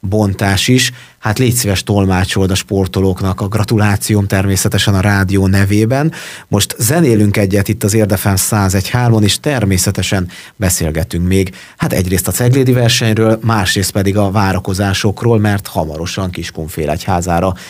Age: 30-49